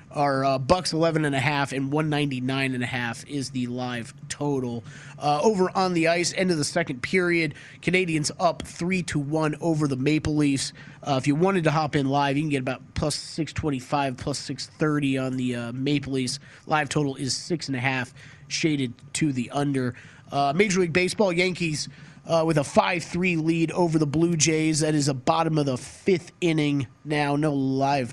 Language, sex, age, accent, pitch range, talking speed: English, male, 30-49, American, 135-165 Hz, 205 wpm